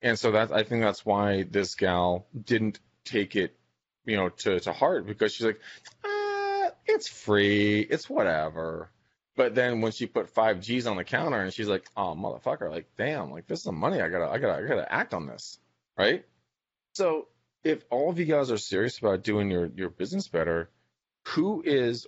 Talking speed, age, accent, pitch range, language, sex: 195 wpm, 30-49, American, 95-120 Hz, English, male